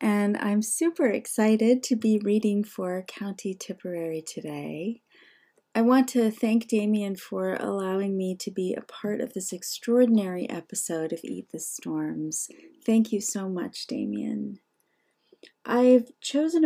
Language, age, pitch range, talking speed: English, 30-49, 185-235 Hz, 135 wpm